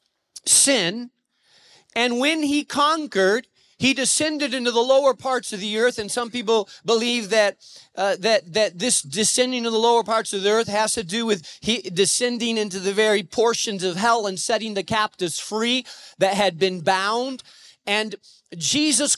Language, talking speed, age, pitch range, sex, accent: English, 170 wpm, 40-59, 200-265 Hz, male, American